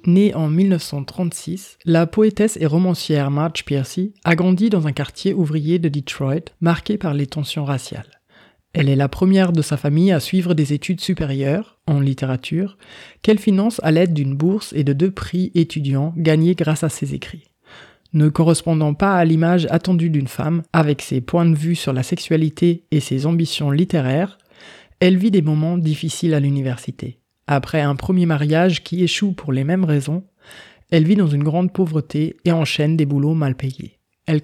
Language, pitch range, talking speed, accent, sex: French, 150-180 Hz, 180 wpm, French, male